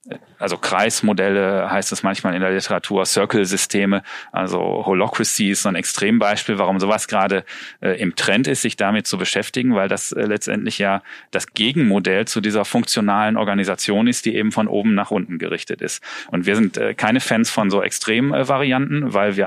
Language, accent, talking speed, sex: German, German, 180 wpm, male